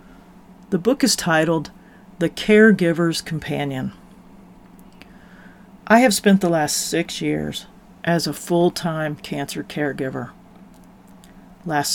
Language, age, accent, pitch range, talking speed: English, 40-59, American, 150-190 Hz, 100 wpm